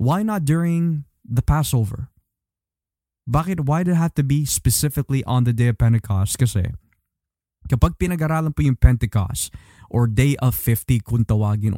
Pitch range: 105-140 Hz